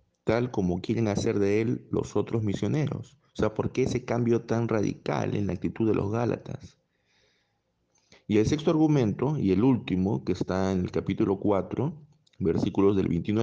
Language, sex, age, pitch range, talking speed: Spanish, male, 50-69, 95-130 Hz, 175 wpm